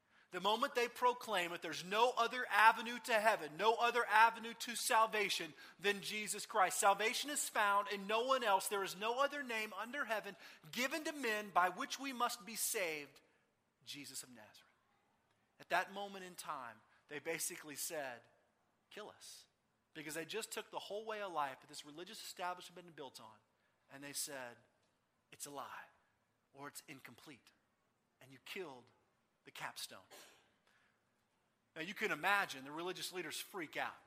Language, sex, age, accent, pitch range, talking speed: English, male, 40-59, American, 180-255 Hz, 165 wpm